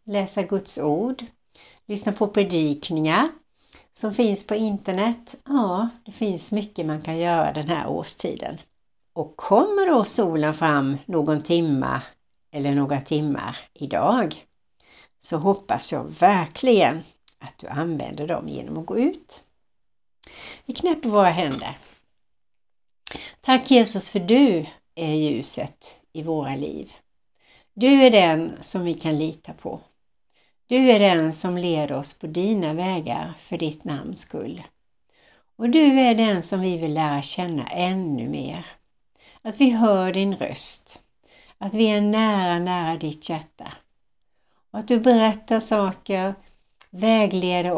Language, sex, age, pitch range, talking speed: Swedish, female, 60-79, 160-220 Hz, 135 wpm